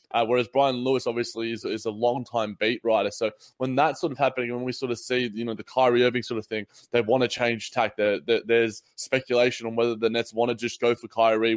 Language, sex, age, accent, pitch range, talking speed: English, male, 20-39, Australian, 115-140 Hz, 245 wpm